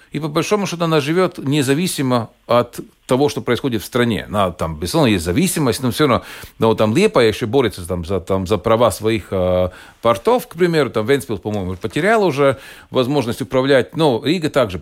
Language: Russian